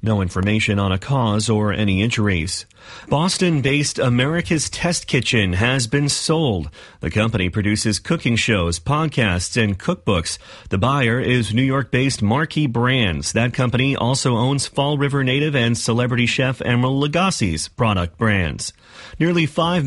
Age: 30-49